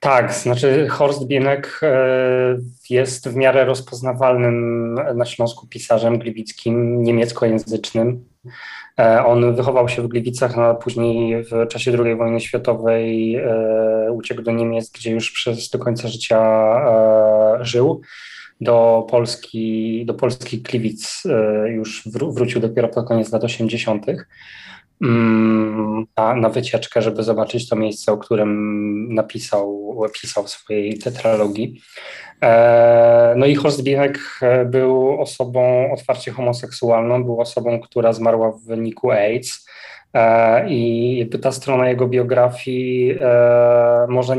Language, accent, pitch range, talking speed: Polish, native, 115-125 Hz, 110 wpm